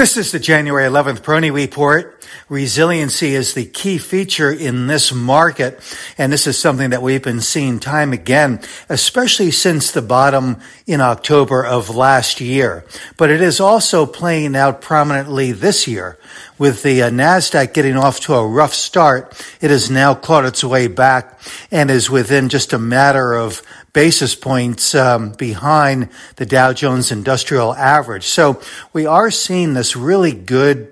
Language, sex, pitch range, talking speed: English, male, 125-150 Hz, 160 wpm